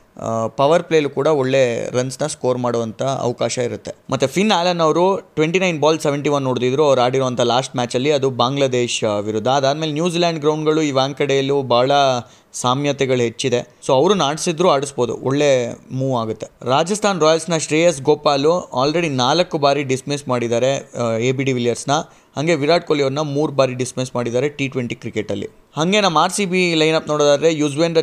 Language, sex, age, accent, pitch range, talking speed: Kannada, male, 20-39, native, 130-160 Hz, 160 wpm